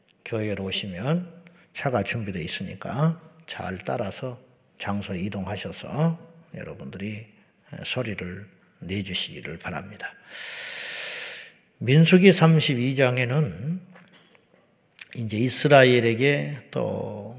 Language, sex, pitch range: Korean, male, 110-150 Hz